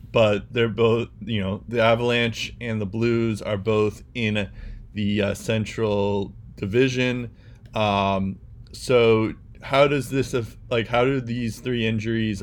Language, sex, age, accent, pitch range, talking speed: English, male, 20-39, American, 105-115 Hz, 135 wpm